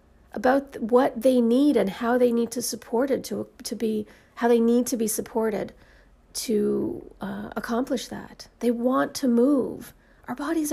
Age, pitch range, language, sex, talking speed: 40-59, 215-265 Hz, English, female, 160 wpm